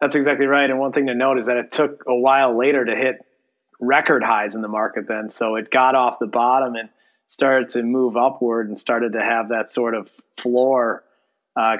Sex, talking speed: male, 220 wpm